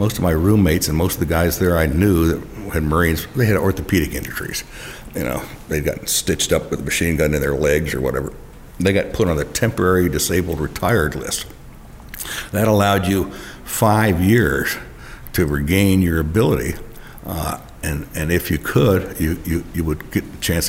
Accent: American